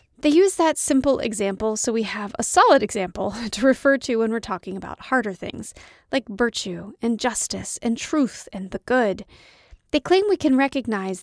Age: 30-49